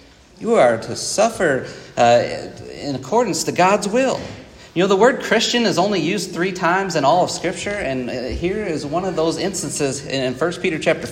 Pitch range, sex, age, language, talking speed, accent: 140-185 Hz, male, 40-59, English, 190 wpm, American